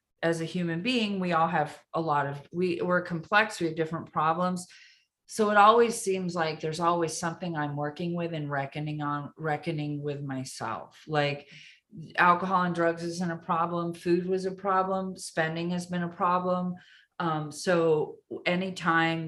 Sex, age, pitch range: female, 30-49, 155-185 Hz